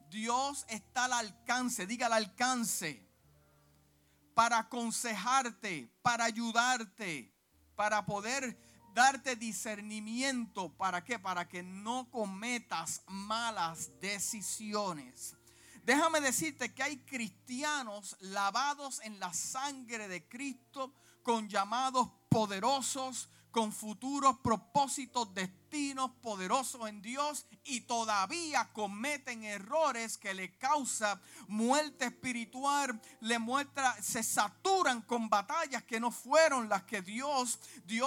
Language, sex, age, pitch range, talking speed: Spanish, male, 50-69, 210-270 Hz, 105 wpm